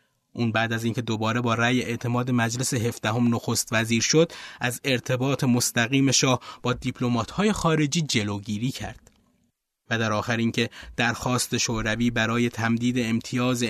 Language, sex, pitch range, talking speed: Persian, male, 120-145 Hz, 135 wpm